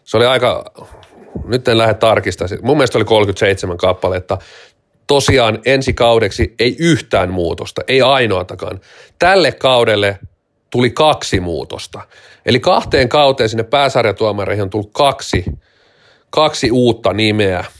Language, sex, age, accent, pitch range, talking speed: Finnish, male, 30-49, native, 110-140 Hz, 120 wpm